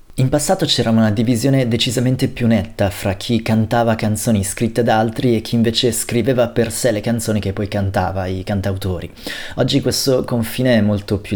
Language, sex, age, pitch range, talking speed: Italian, male, 30-49, 105-120 Hz, 180 wpm